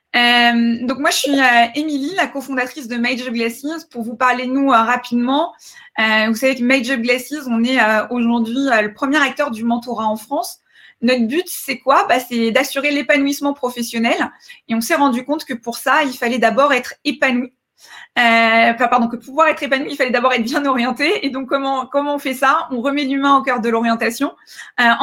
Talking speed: 210 wpm